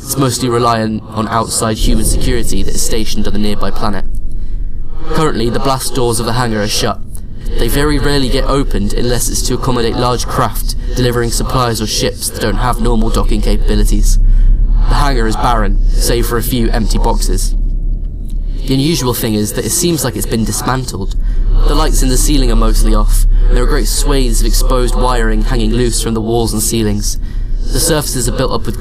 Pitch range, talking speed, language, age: 110-125 Hz, 195 wpm, English, 20-39